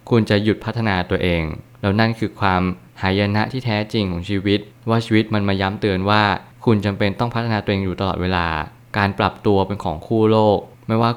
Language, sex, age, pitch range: Thai, male, 20-39, 95-115 Hz